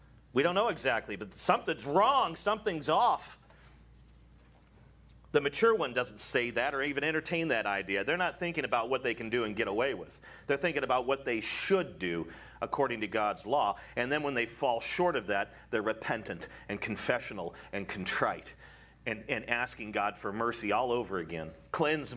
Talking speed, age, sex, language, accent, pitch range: 180 wpm, 40-59, male, English, American, 130-210 Hz